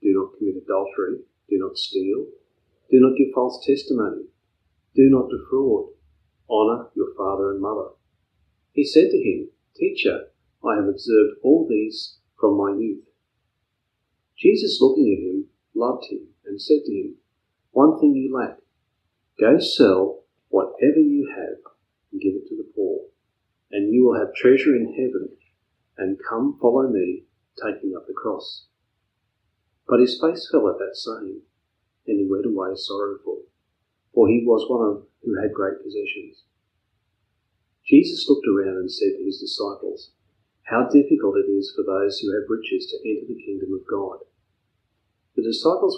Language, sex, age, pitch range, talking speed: English, male, 40-59, 285-390 Hz, 155 wpm